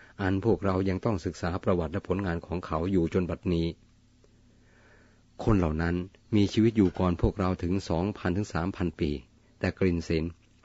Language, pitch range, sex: Thai, 85-110 Hz, male